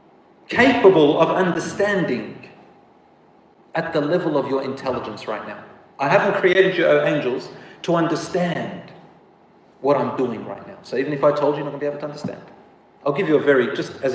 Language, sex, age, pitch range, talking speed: English, male, 40-59, 145-185 Hz, 190 wpm